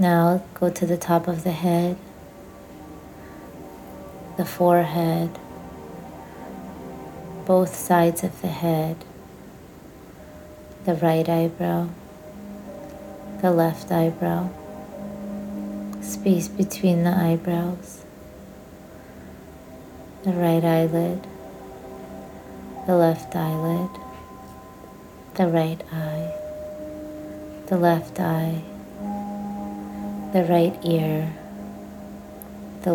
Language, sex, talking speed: English, female, 75 wpm